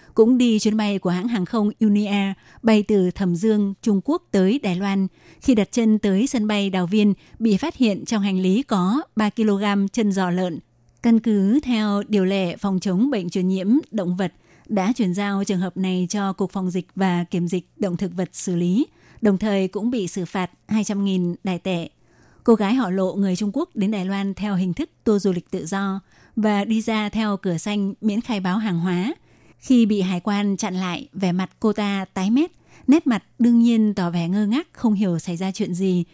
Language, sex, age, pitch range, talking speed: Vietnamese, female, 20-39, 185-215 Hz, 220 wpm